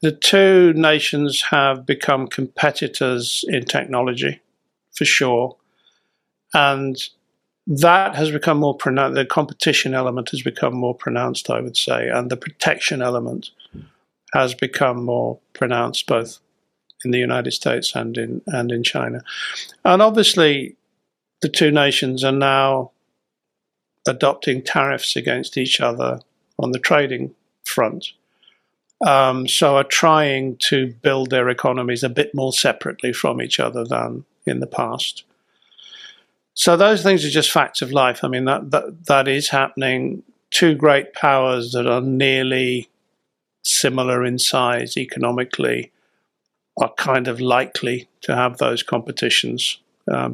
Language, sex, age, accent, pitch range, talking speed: English, male, 50-69, British, 125-145 Hz, 135 wpm